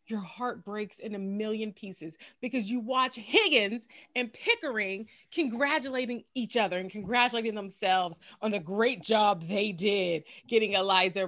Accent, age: American, 30-49